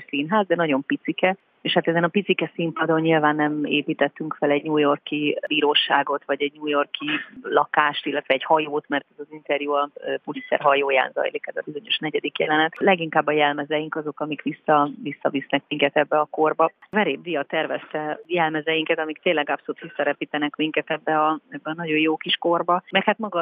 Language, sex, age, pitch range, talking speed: Hungarian, female, 30-49, 145-165 Hz, 180 wpm